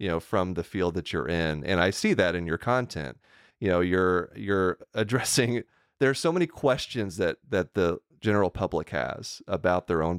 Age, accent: 30-49, American